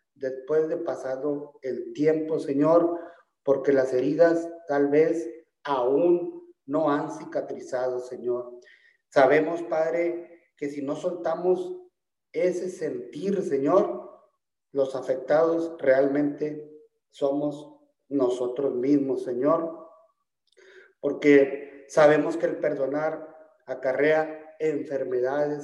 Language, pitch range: Spanish, 140-180 Hz